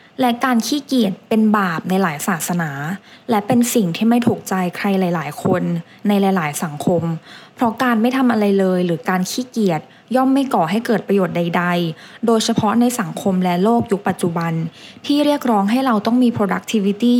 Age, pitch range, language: 20-39, 175-225 Hz, English